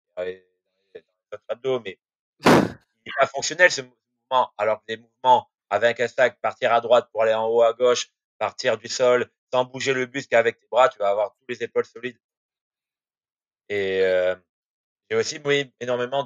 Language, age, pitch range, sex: French, 30-49, 110-140 Hz, male